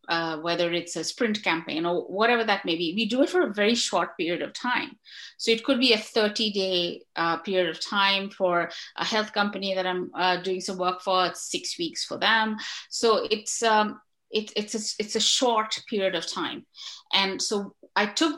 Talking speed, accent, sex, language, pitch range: 205 wpm, Indian, female, English, 175-220 Hz